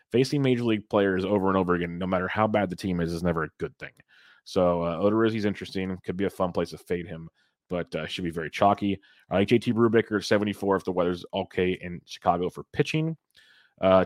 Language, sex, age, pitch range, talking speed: English, male, 30-49, 90-110 Hz, 220 wpm